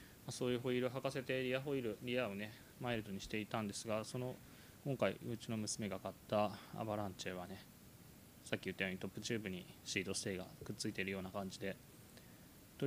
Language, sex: Japanese, male